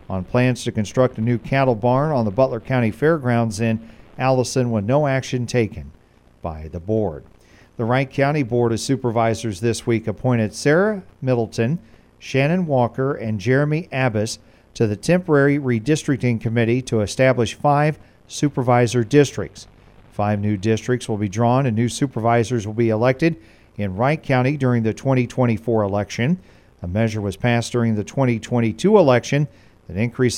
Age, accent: 40-59, American